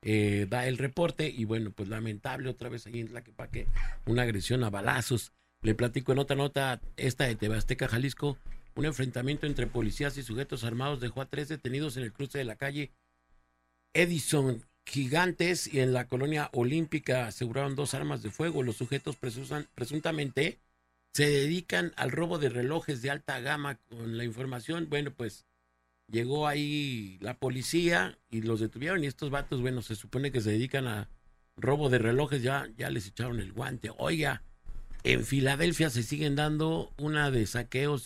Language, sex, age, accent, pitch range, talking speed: Spanish, male, 50-69, Mexican, 110-145 Hz, 170 wpm